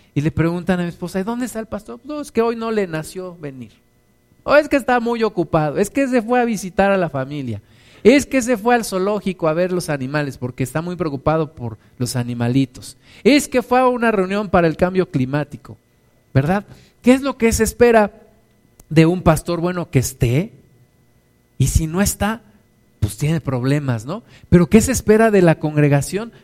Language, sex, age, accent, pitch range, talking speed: Spanish, male, 50-69, Mexican, 150-200 Hz, 205 wpm